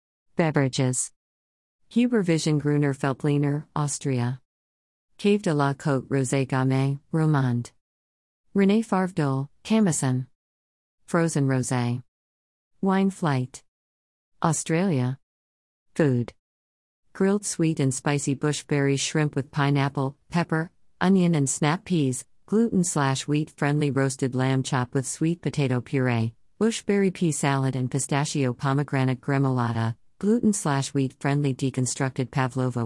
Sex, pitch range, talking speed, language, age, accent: female, 120-160 Hz, 95 wpm, English, 40-59, American